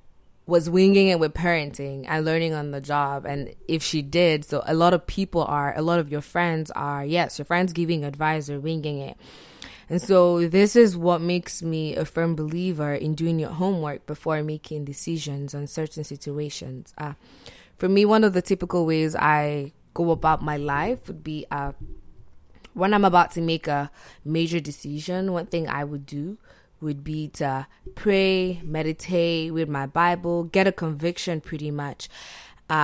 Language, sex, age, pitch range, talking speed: English, female, 20-39, 150-175 Hz, 175 wpm